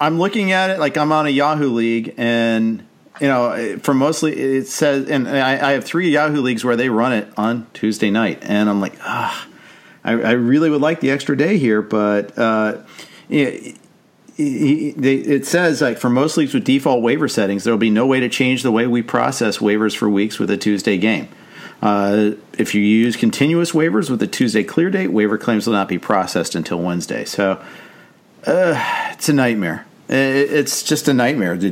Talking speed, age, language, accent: 195 wpm, 50-69, English, American